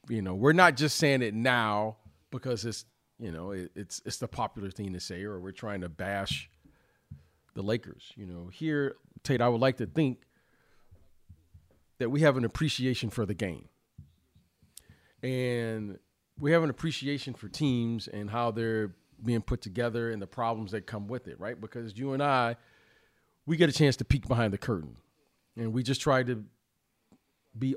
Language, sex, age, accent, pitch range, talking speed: English, male, 40-59, American, 100-130 Hz, 180 wpm